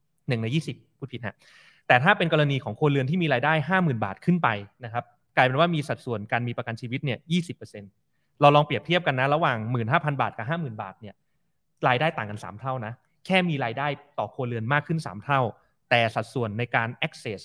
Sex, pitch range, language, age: male, 120-155 Hz, Thai, 30-49